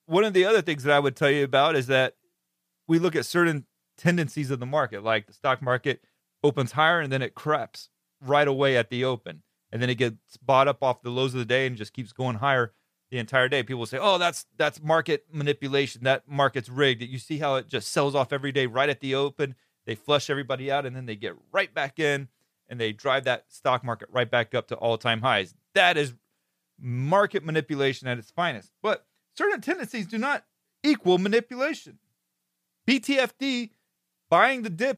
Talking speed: 210 wpm